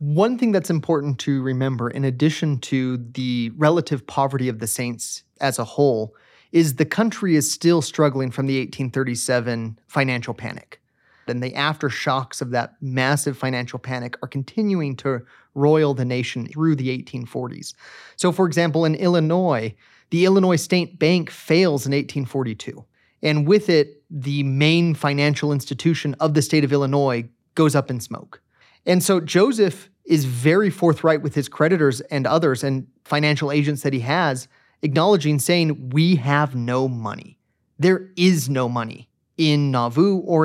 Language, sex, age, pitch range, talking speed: English, male, 30-49, 130-160 Hz, 155 wpm